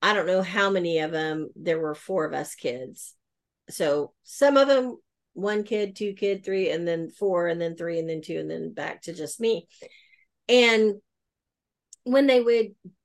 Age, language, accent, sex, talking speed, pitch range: 40-59, English, American, female, 190 wpm, 175-225 Hz